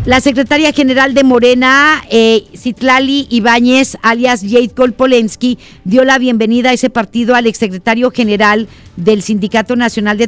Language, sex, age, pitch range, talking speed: Spanish, female, 50-69, 225-265 Hz, 140 wpm